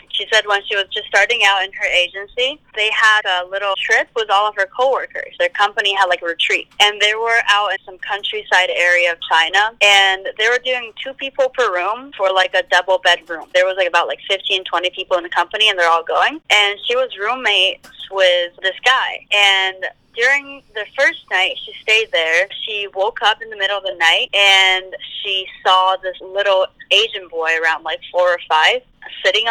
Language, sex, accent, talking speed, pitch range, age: English, female, American, 205 wpm, 180-230 Hz, 20-39